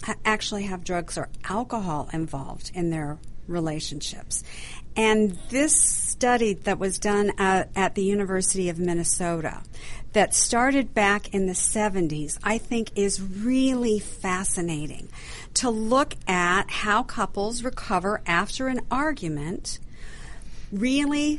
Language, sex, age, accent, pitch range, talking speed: English, female, 50-69, American, 185-220 Hz, 120 wpm